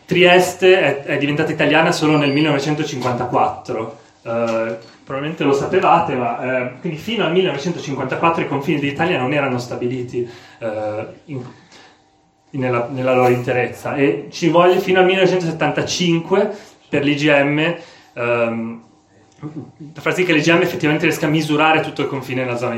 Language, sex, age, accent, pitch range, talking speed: Italian, male, 30-49, native, 125-160 Hz, 135 wpm